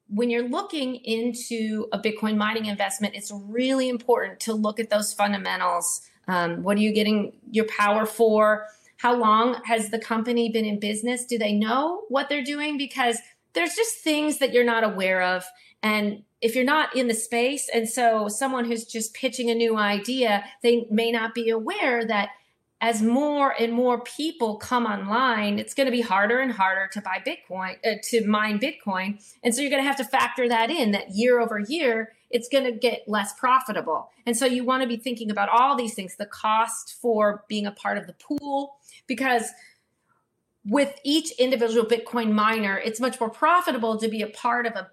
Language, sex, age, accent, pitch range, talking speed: English, female, 30-49, American, 210-255 Hz, 190 wpm